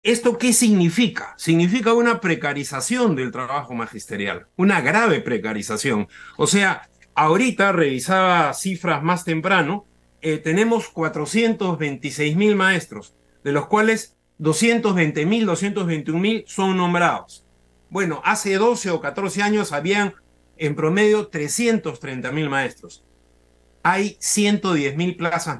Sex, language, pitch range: male, Spanish, 130-200 Hz